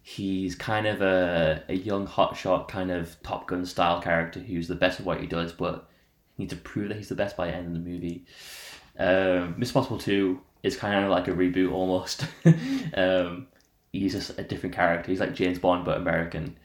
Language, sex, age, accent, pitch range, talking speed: English, male, 10-29, British, 85-100 Hz, 205 wpm